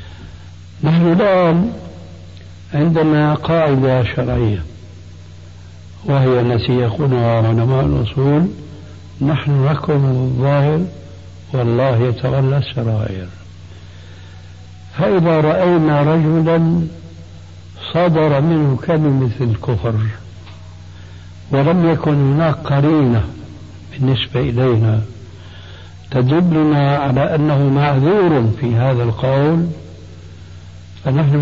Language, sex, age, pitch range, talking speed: Arabic, male, 60-79, 90-145 Hz, 75 wpm